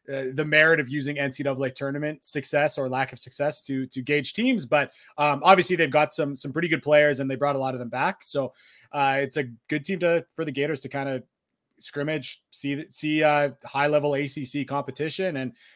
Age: 20-39